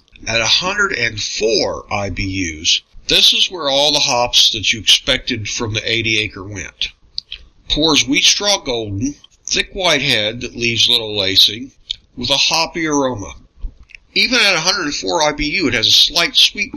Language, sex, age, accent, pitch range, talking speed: English, male, 50-69, American, 105-135 Hz, 145 wpm